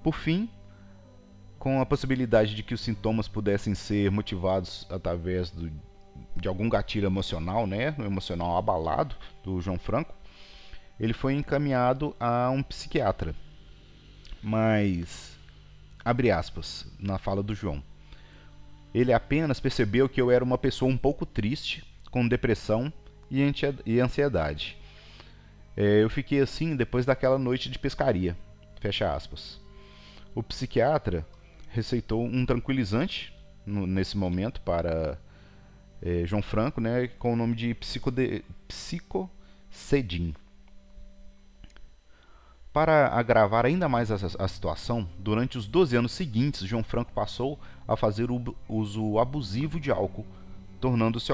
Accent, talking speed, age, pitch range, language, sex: Brazilian, 125 wpm, 40-59, 95-125 Hz, Portuguese, male